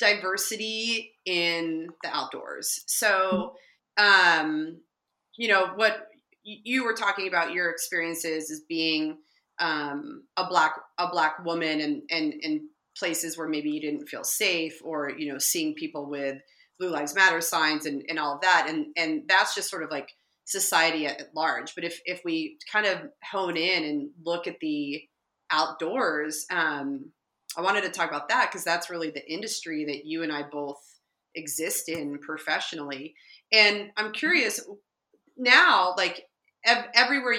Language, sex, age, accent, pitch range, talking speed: English, female, 30-49, American, 155-220 Hz, 160 wpm